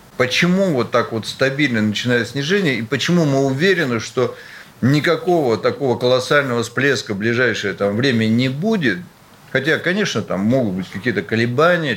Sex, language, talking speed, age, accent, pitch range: male, Russian, 140 wpm, 50-69, native, 115-150 Hz